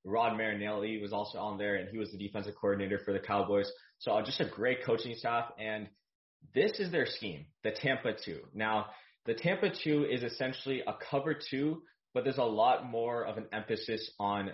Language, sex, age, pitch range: English, male, 20-39, 105-130 Hz